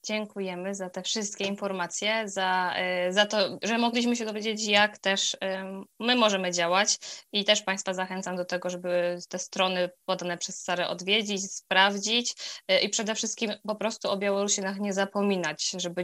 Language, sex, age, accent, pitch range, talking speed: Polish, female, 20-39, native, 180-200 Hz, 155 wpm